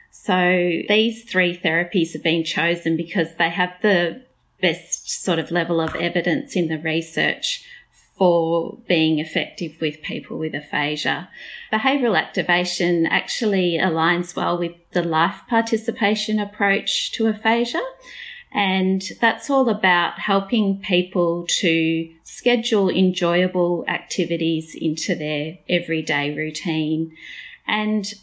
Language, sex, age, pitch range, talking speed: English, female, 30-49, 165-200 Hz, 115 wpm